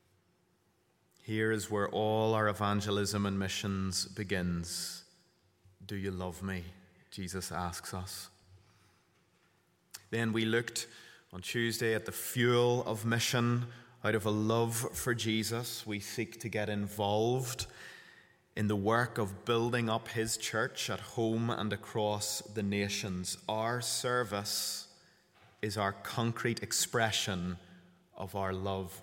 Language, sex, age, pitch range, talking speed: English, male, 30-49, 100-115 Hz, 125 wpm